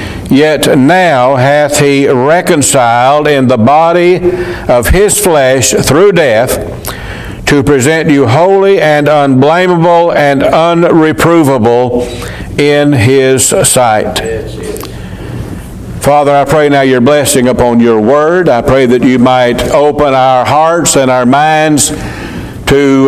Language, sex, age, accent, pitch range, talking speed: English, male, 60-79, American, 125-155 Hz, 115 wpm